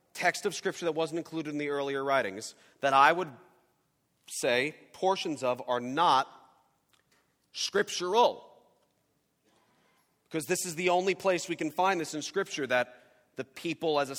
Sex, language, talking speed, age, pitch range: male, English, 150 wpm, 40-59, 145-190 Hz